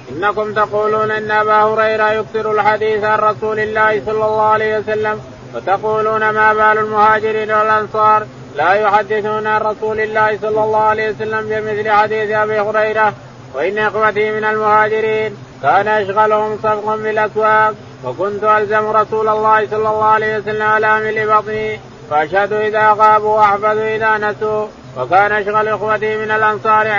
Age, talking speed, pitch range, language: 30-49, 135 wpm, 210-215 Hz, Arabic